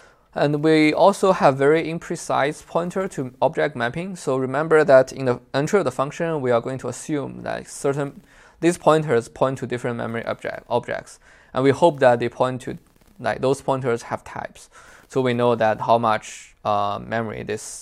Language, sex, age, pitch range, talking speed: English, male, 20-39, 120-145 Hz, 185 wpm